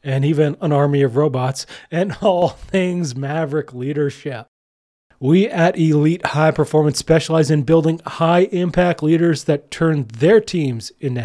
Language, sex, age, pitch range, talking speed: English, male, 30-49, 135-160 Hz, 140 wpm